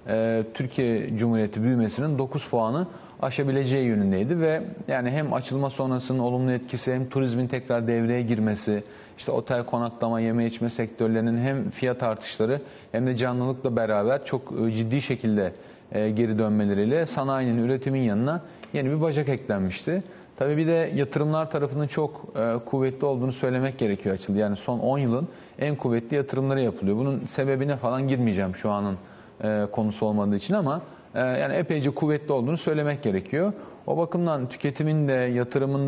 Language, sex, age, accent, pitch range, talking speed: Turkish, male, 40-59, native, 115-140 Hz, 140 wpm